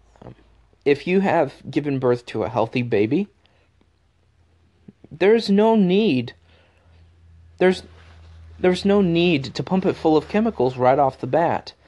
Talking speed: 130 wpm